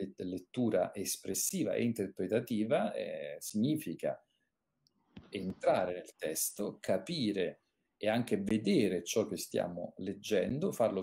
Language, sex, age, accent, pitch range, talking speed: Italian, male, 40-59, native, 100-150 Hz, 100 wpm